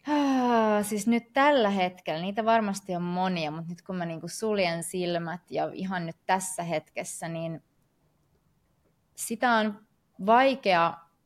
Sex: female